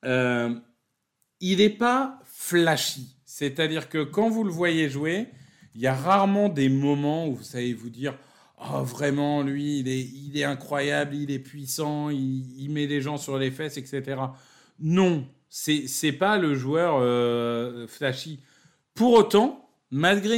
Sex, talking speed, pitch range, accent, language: male, 170 wpm, 135-205 Hz, French, French